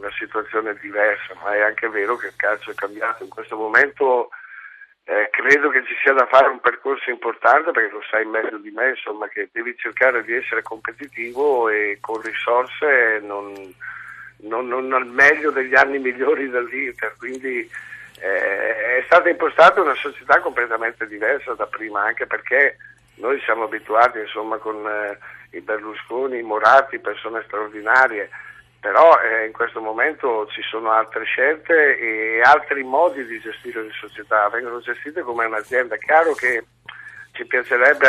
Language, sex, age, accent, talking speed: Italian, male, 60-79, native, 160 wpm